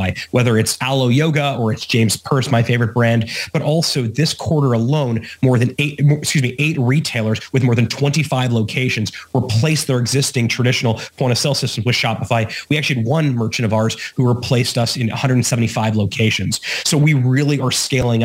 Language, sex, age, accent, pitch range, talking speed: English, male, 30-49, American, 115-140 Hz, 185 wpm